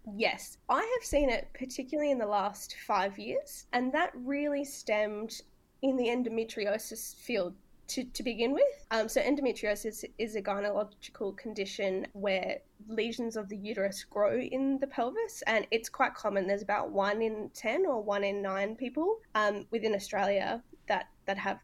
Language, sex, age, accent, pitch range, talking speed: English, female, 10-29, Australian, 205-265 Hz, 165 wpm